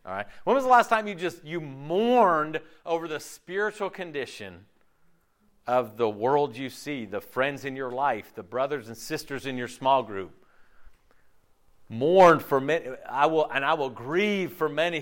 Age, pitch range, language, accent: 40-59, 120-195 Hz, English, American